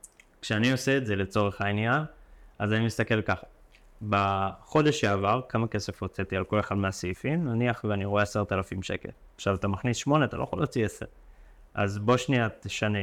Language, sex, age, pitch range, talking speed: Hebrew, male, 20-39, 100-120 Hz, 175 wpm